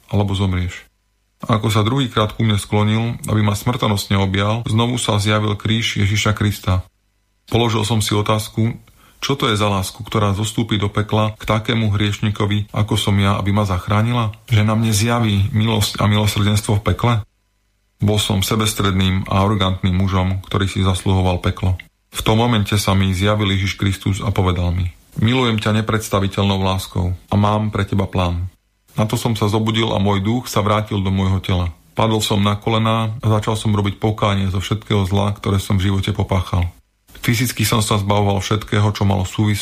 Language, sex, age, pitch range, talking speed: Slovak, male, 30-49, 100-110 Hz, 175 wpm